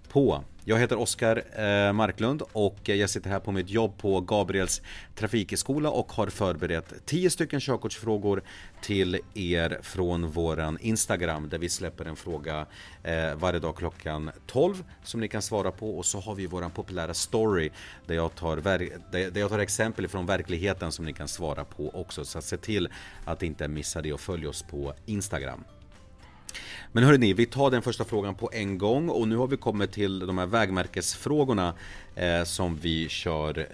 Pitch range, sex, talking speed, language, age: 85-105 Hz, male, 175 wpm, Swedish, 30-49